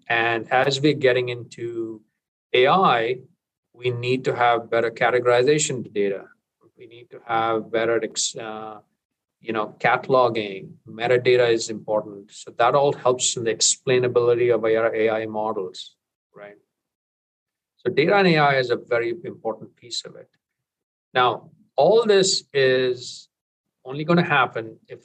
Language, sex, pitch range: English, male, 115-145 Hz